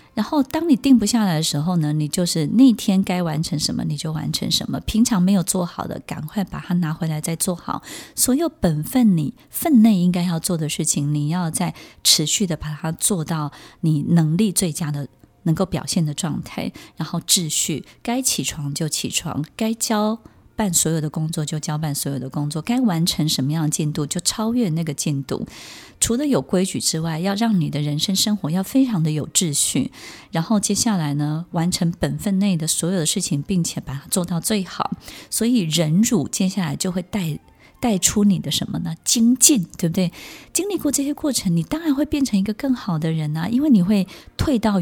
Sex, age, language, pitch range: female, 20-39, Chinese, 155-215 Hz